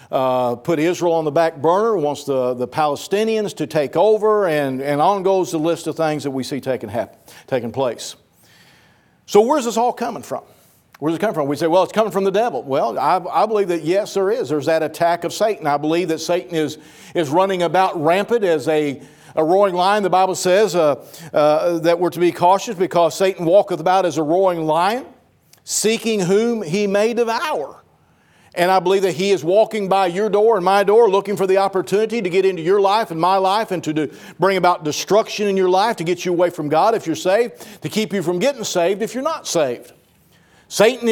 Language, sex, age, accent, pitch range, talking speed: English, male, 50-69, American, 160-205 Hz, 220 wpm